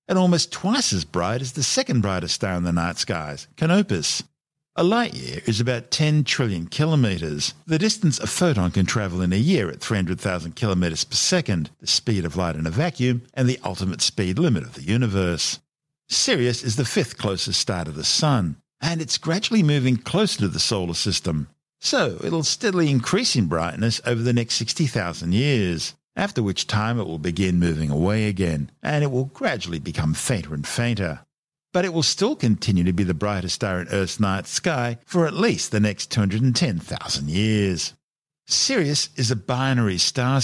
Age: 50-69